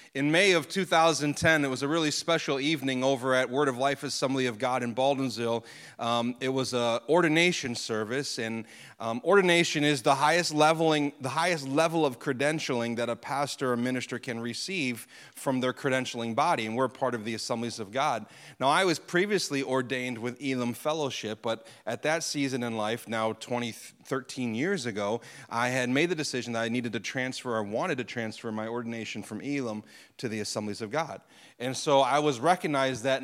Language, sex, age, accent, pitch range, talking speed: English, male, 30-49, American, 120-150 Hz, 190 wpm